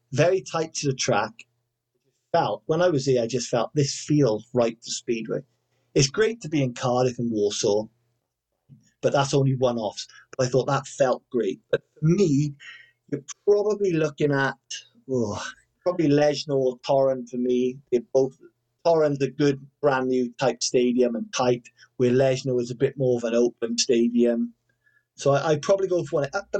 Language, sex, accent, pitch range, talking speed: English, male, British, 125-160 Hz, 180 wpm